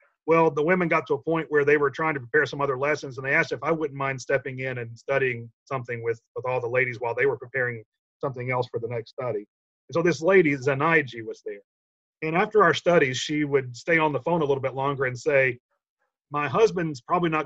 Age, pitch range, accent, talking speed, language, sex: 40-59, 130-165 Hz, American, 235 wpm, English, male